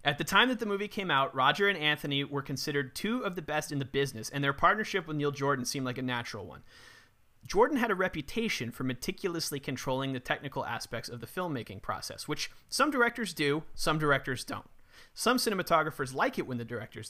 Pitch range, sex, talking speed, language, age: 130-165 Hz, male, 205 wpm, English, 30-49